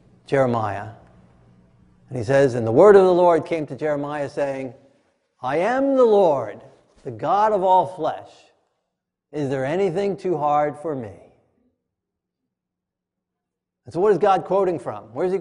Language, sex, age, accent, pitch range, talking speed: English, male, 50-69, American, 150-240 Hz, 155 wpm